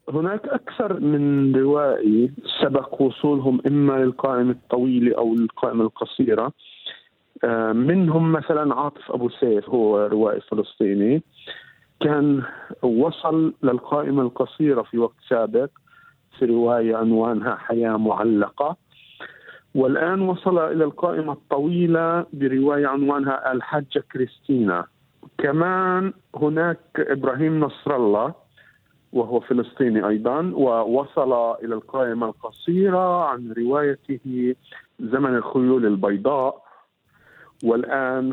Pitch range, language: 120-155 Hz, Arabic